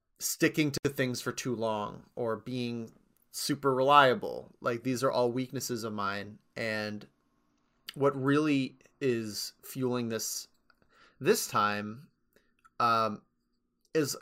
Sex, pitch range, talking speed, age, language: male, 115-135 Hz, 115 wpm, 30-49, English